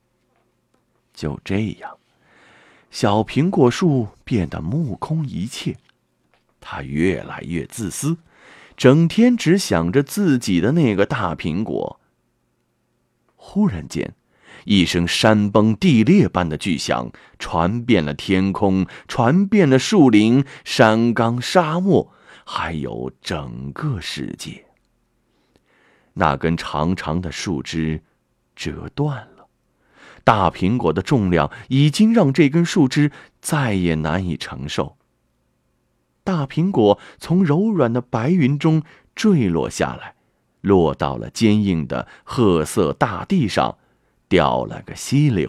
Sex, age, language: male, 30-49, Chinese